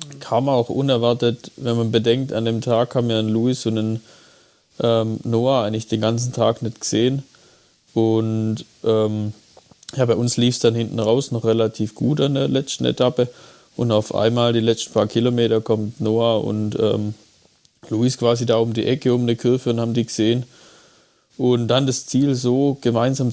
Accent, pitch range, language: German, 110-120 Hz, German